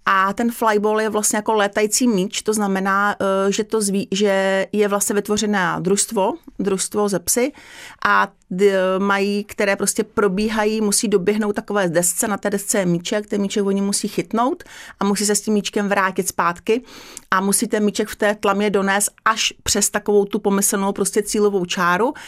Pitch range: 190-215 Hz